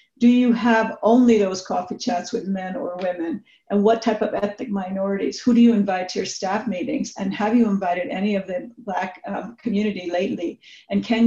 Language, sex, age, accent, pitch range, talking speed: English, female, 50-69, American, 190-225 Hz, 200 wpm